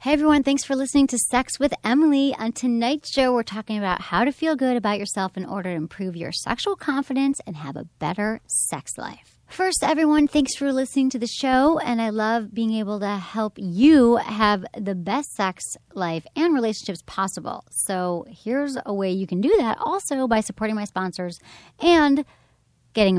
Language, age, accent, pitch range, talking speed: English, 30-49, American, 180-245 Hz, 190 wpm